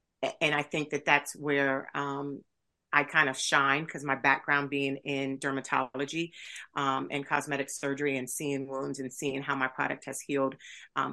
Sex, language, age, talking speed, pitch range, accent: female, English, 40-59, 175 wpm, 140-155 Hz, American